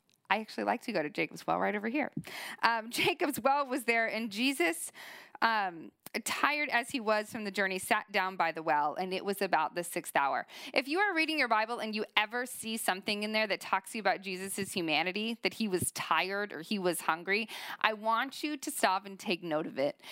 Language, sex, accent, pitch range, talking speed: English, female, American, 195-275 Hz, 225 wpm